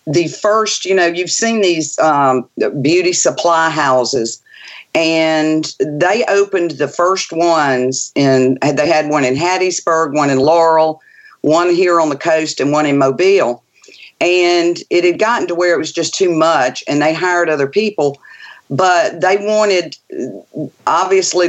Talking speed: 155 wpm